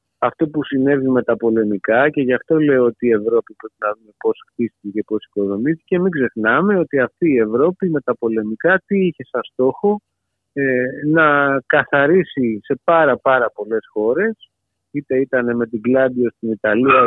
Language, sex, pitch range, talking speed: Greek, male, 115-160 Hz, 170 wpm